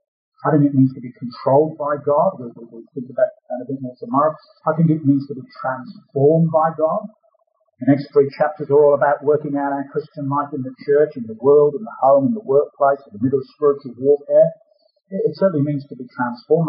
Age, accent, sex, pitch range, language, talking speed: 50-69, British, male, 155-240 Hz, English, 230 wpm